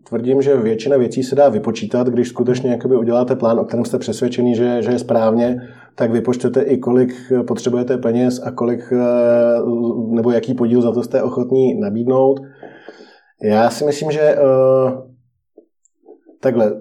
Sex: male